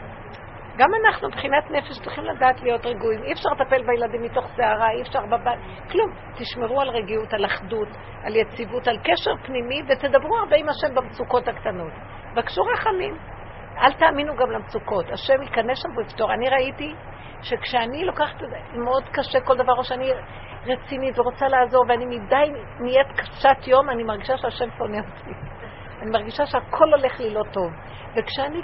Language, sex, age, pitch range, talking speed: Hebrew, female, 50-69, 230-300 Hz, 155 wpm